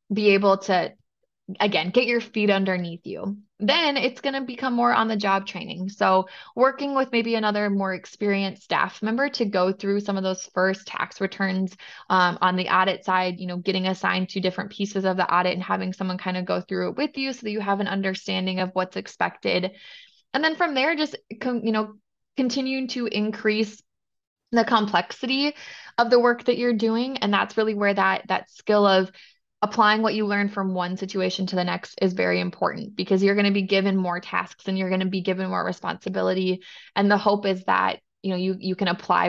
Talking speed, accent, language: 210 wpm, American, English